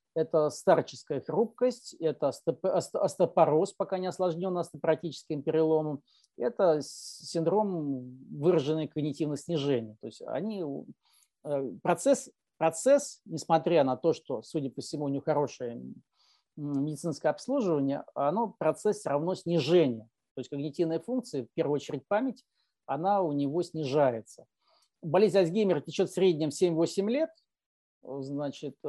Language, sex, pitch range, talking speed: Russian, male, 140-180 Hz, 110 wpm